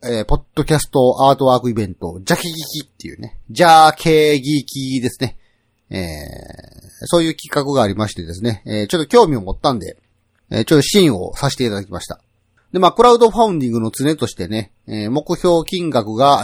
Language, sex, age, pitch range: Japanese, male, 40-59, 110-160 Hz